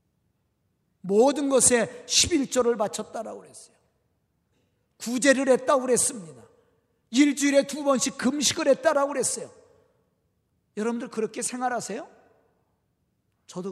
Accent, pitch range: native, 150-220 Hz